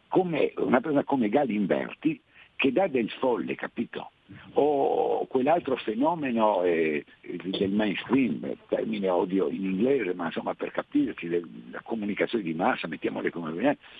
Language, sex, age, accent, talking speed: Italian, male, 60-79, native, 135 wpm